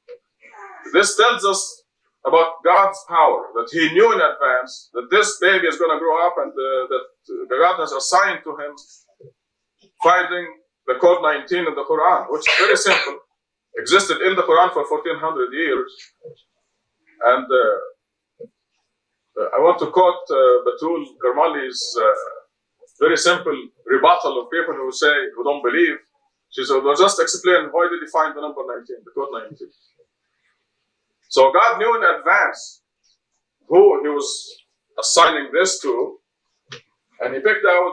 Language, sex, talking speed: English, male, 150 wpm